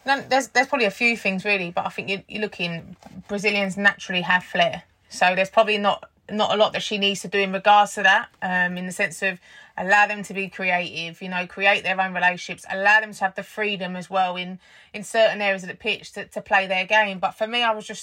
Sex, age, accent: female, 30-49, British